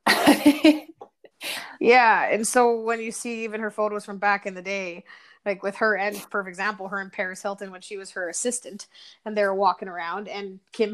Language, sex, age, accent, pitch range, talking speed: English, female, 20-39, American, 195-230 Hz, 190 wpm